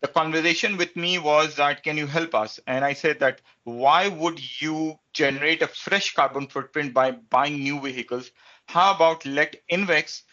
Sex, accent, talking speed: male, Indian, 175 wpm